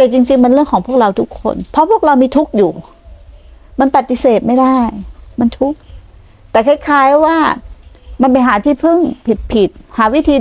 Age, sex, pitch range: 60-79, female, 170-260 Hz